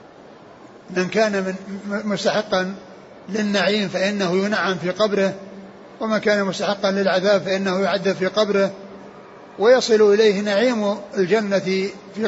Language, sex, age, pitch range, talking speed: Arabic, male, 60-79, 185-215 Hz, 110 wpm